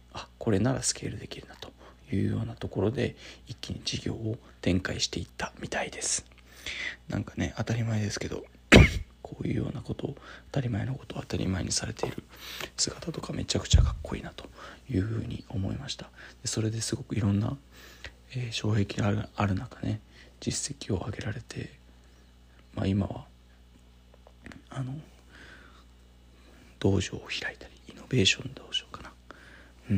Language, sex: Japanese, male